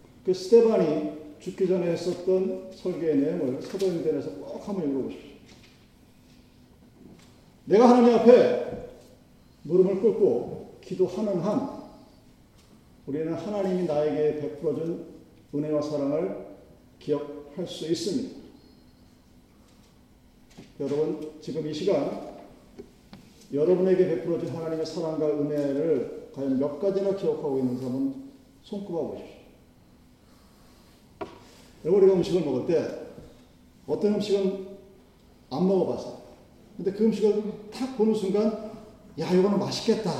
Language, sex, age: Korean, male, 40-59